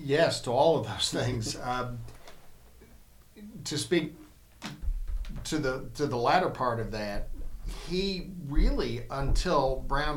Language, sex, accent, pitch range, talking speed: English, male, American, 110-140 Hz, 125 wpm